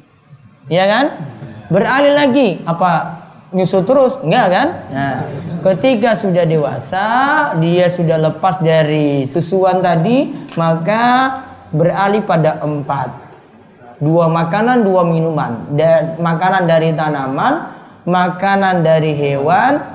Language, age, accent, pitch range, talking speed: Indonesian, 20-39, native, 150-210 Hz, 100 wpm